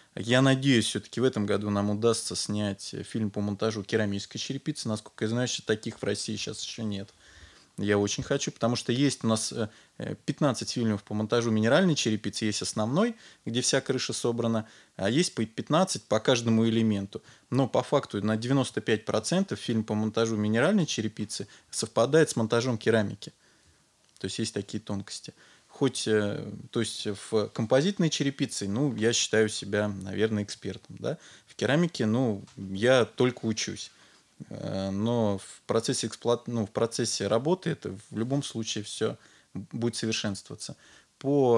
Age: 20-39